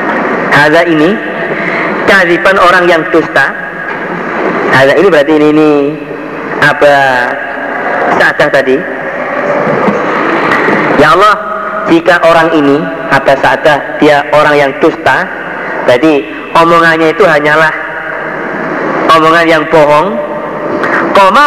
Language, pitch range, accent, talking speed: Indonesian, 155-185 Hz, native, 90 wpm